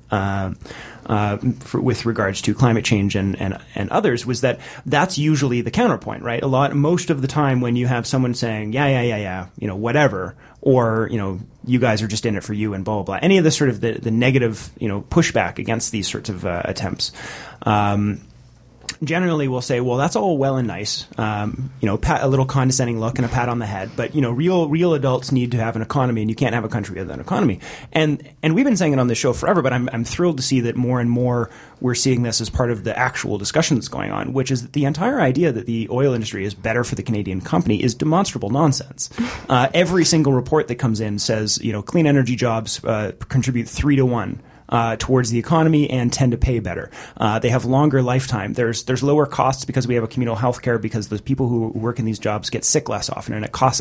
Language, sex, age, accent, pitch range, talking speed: English, male, 30-49, American, 110-140 Hz, 250 wpm